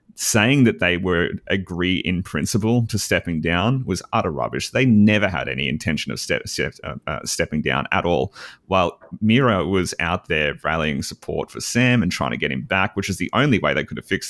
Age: 30-49